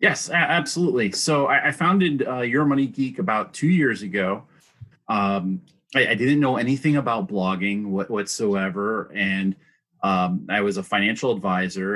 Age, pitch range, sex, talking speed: 30-49, 95-120 Hz, male, 145 wpm